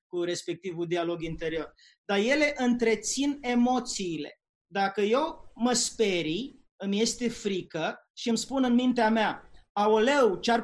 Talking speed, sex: 130 wpm, male